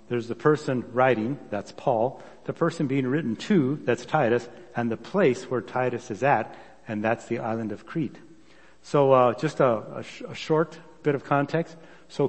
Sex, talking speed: male, 185 wpm